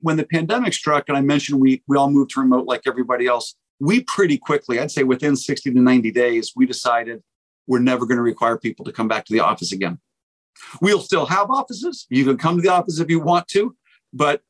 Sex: male